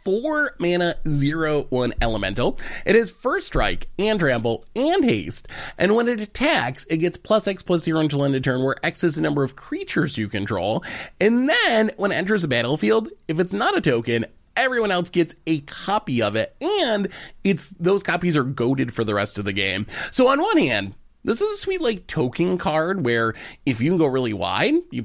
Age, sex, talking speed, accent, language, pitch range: 30-49, male, 205 wpm, American, English, 130-195 Hz